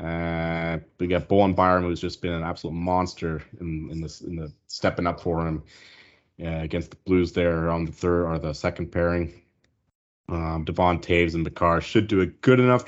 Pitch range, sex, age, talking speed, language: 80-95 Hz, male, 30-49, 200 wpm, English